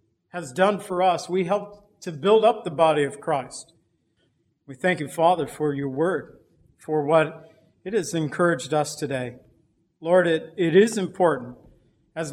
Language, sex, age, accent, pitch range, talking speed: English, male, 50-69, American, 145-175 Hz, 160 wpm